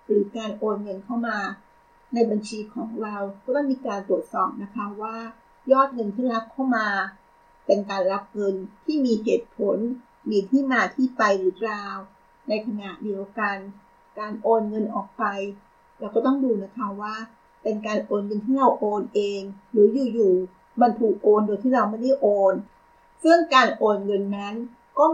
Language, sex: Thai, female